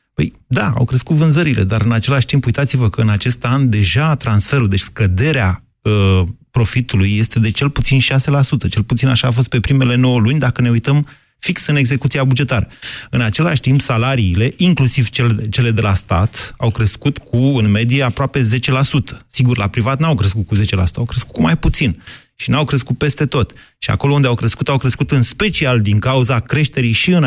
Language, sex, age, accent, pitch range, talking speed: Romanian, male, 30-49, native, 110-140 Hz, 195 wpm